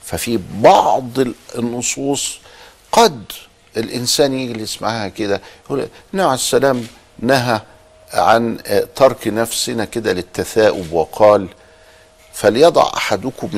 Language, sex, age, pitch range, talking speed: Arabic, male, 50-69, 95-130 Hz, 90 wpm